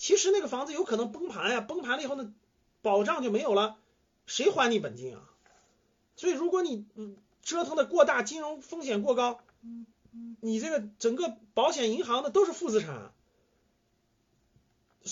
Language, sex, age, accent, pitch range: Chinese, male, 30-49, native, 190-270 Hz